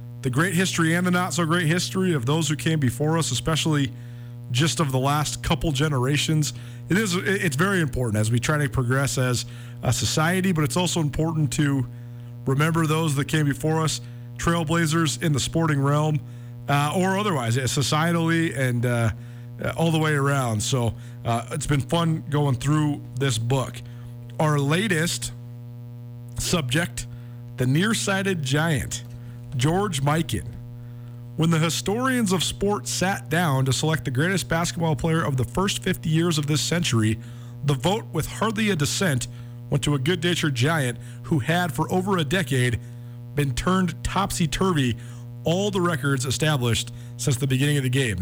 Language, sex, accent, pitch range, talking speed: English, male, American, 120-165 Hz, 155 wpm